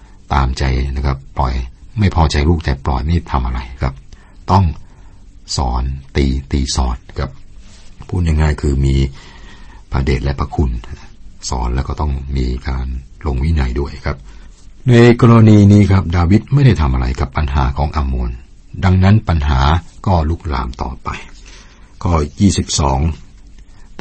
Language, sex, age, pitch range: Thai, male, 60-79, 70-90 Hz